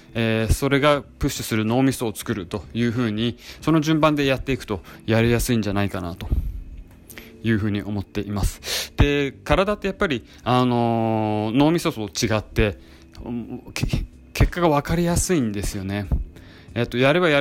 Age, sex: 20-39, male